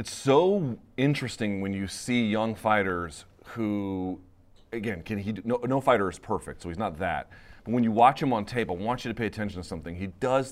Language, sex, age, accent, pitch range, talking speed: English, male, 30-49, American, 100-135 Hz, 215 wpm